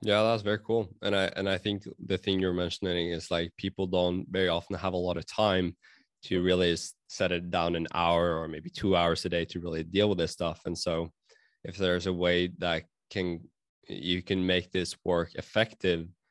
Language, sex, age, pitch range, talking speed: English, male, 20-39, 85-100 Hz, 210 wpm